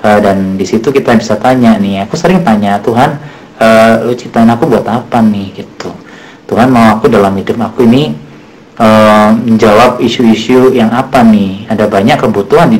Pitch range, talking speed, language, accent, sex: 100-125 Hz, 170 wpm, Indonesian, native, male